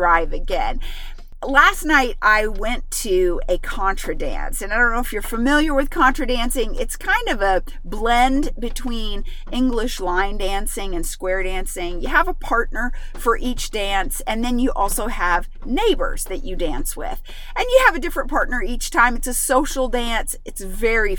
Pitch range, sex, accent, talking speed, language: 195-275 Hz, female, American, 180 wpm, English